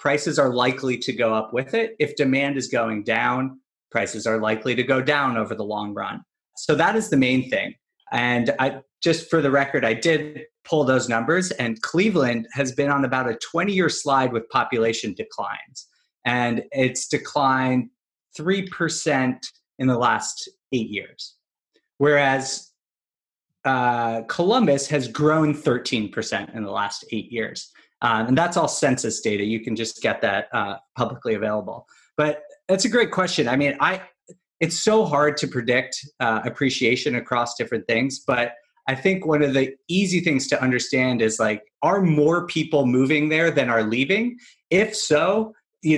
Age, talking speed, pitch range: 30-49, 165 wpm, 120-155 Hz